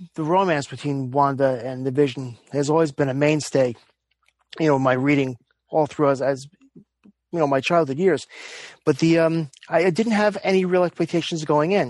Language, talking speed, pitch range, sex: English, 185 wpm, 145-185 Hz, male